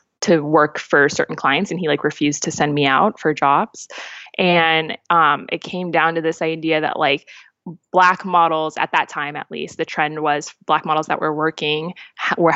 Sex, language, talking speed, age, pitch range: female, English, 200 wpm, 20-39, 150-175 Hz